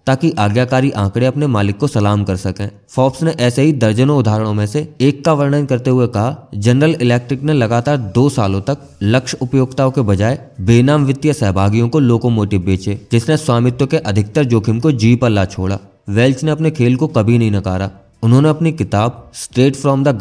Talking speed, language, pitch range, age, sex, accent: 145 wpm, English, 110-145 Hz, 20-39, male, Indian